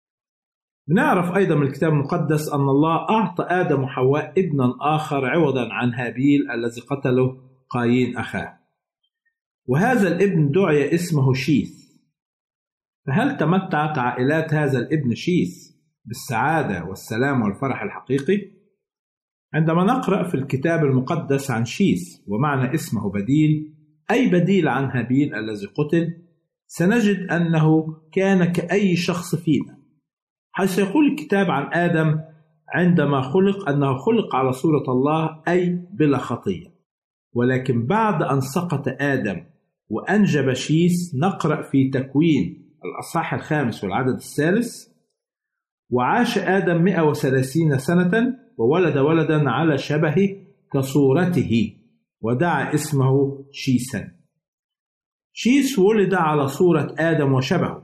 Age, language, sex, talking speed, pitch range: 50-69, Arabic, male, 105 wpm, 135-180 Hz